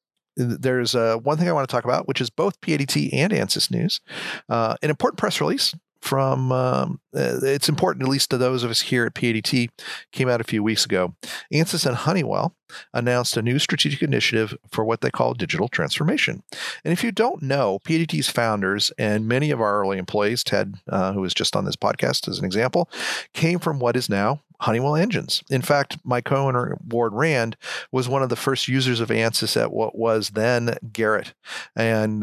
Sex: male